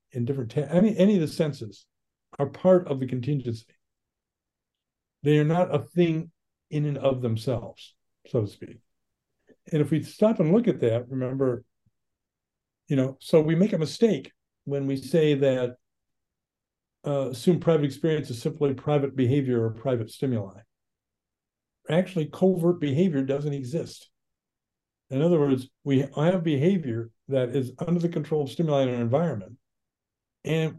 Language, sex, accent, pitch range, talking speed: English, male, American, 120-155 Hz, 150 wpm